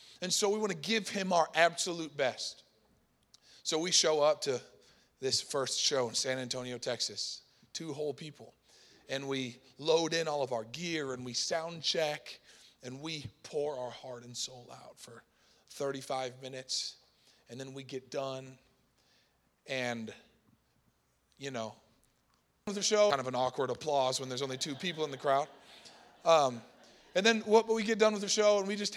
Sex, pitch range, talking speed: male, 130-185 Hz, 175 wpm